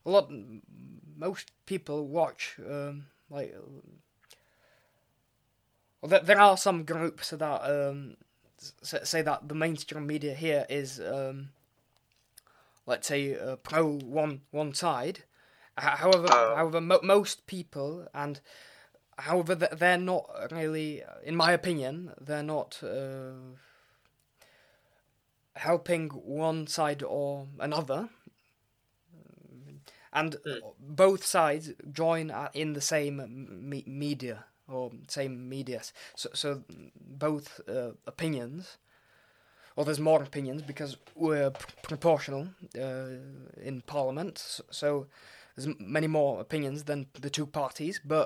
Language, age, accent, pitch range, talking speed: Czech, 20-39, British, 130-160 Hz, 115 wpm